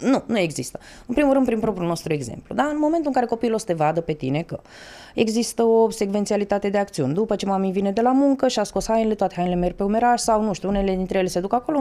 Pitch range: 190-255 Hz